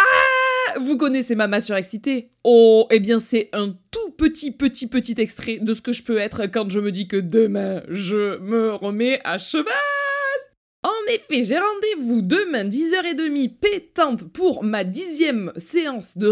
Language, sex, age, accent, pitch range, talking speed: French, female, 20-39, French, 190-275 Hz, 170 wpm